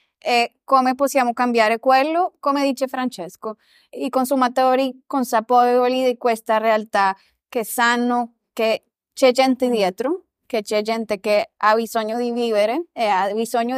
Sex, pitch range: female, 225-265 Hz